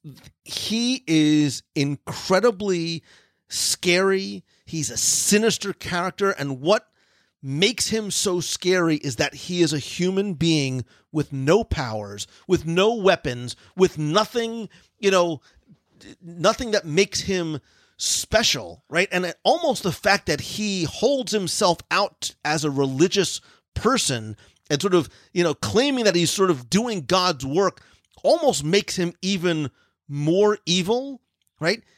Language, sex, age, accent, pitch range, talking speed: English, male, 40-59, American, 145-200 Hz, 130 wpm